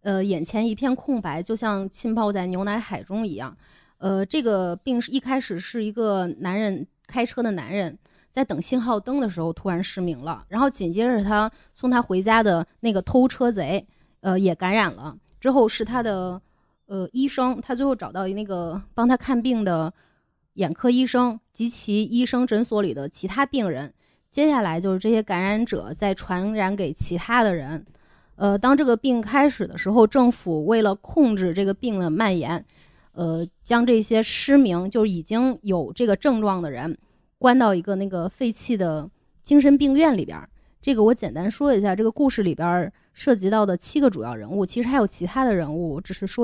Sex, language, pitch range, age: female, Chinese, 185-245 Hz, 20-39